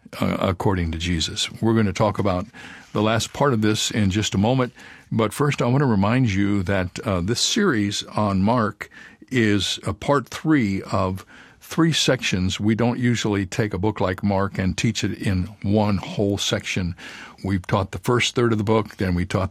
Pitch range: 95-120 Hz